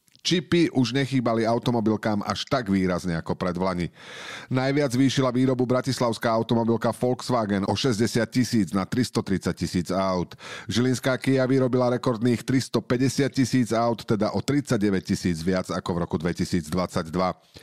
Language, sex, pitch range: Slovak, male, 95-130 Hz